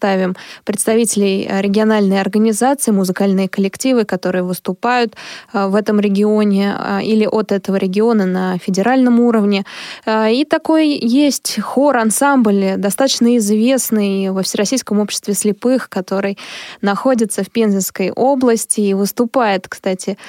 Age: 20-39